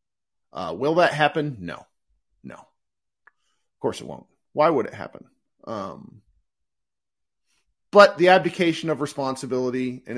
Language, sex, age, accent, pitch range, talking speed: English, male, 40-59, American, 120-180 Hz, 125 wpm